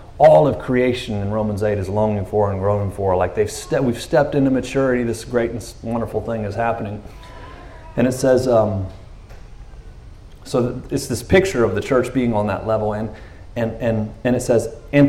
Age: 30-49